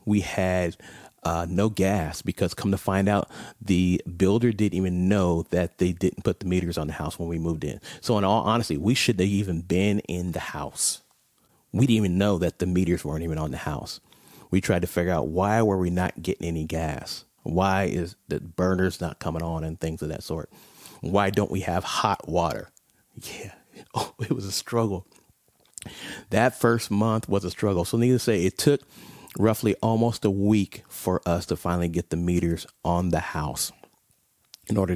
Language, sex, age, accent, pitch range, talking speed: English, male, 30-49, American, 85-105 Hz, 195 wpm